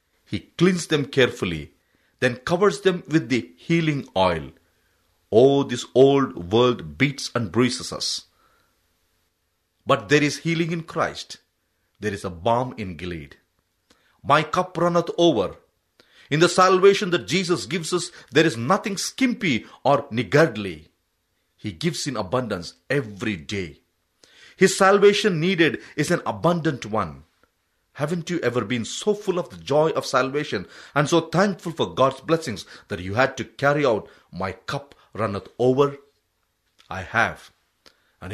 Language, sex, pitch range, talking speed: English, male, 105-175 Hz, 140 wpm